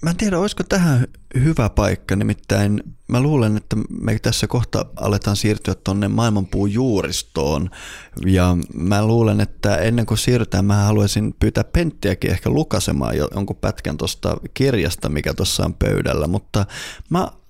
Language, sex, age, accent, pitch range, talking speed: Finnish, male, 20-39, native, 85-110 Hz, 145 wpm